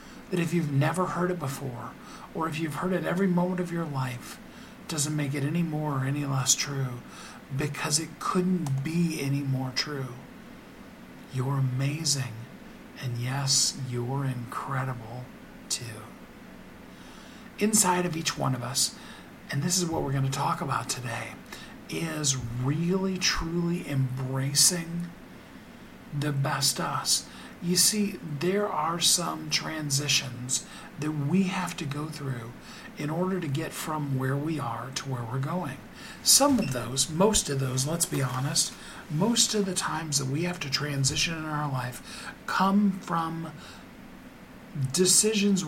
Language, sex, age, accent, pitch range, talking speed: English, male, 50-69, American, 135-185 Hz, 145 wpm